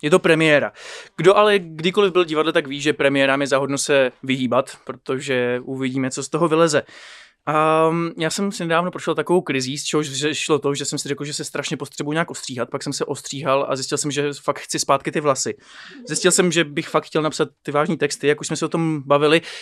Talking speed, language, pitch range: 225 wpm, Czech, 140-160 Hz